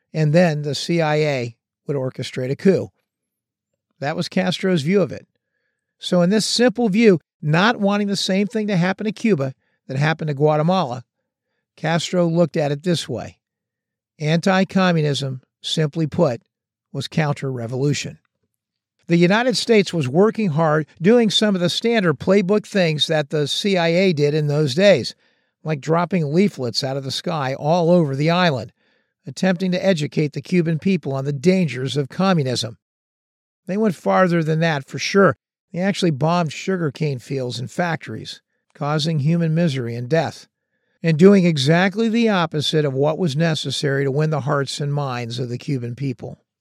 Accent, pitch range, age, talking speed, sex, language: American, 145-185 Hz, 50-69, 160 wpm, male, English